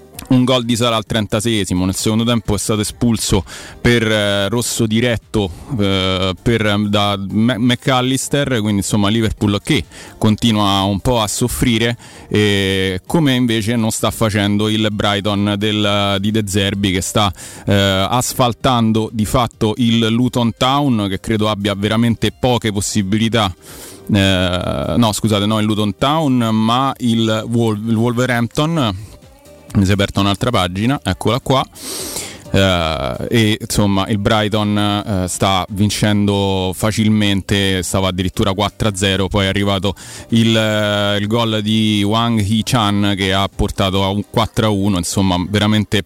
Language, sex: Italian, male